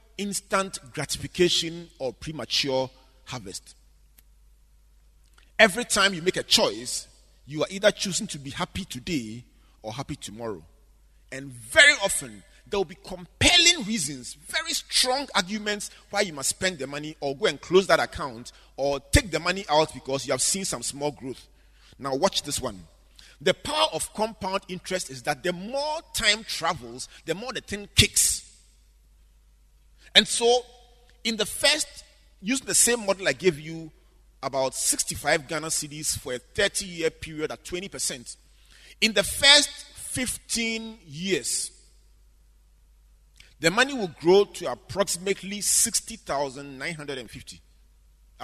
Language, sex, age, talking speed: English, male, 40-59, 140 wpm